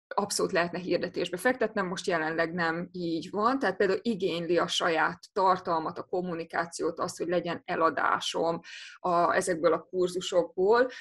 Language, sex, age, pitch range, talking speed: Hungarian, female, 20-39, 175-215 Hz, 135 wpm